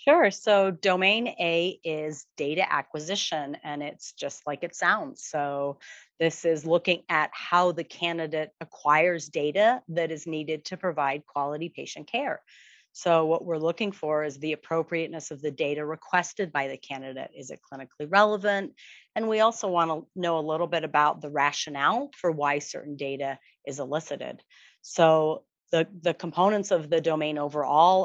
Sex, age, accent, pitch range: female, 30-49, American, 150-180 Hz